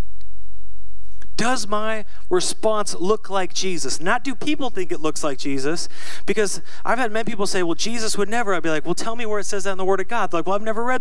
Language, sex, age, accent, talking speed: English, male, 30-49, American, 240 wpm